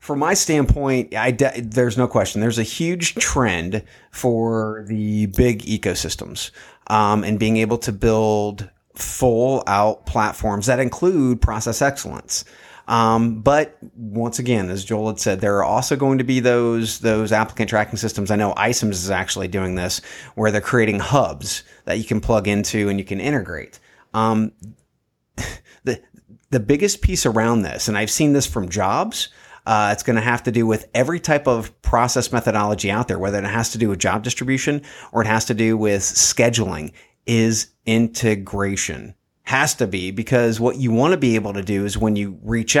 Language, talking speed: English, 180 wpm